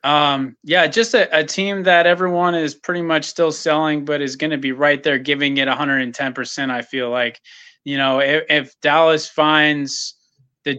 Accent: American